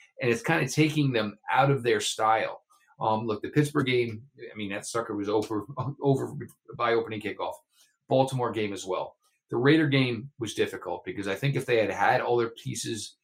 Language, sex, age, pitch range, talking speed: English, male, 30-49, 105-130 Hz, 200 wpm